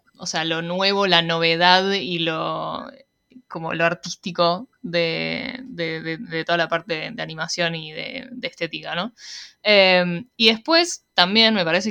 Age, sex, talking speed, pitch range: 10-29, female, 160 wpm, 165-210 Hz